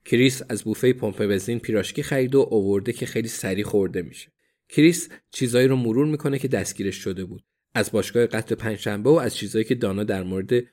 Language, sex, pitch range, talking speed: Persian, male, 105-135 Hz, 190 wpm